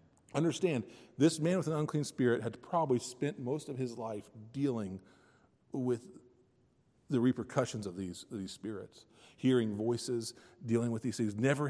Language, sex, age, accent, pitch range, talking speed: English, male, 40-59, American, 110-140 Hz, 155 wpm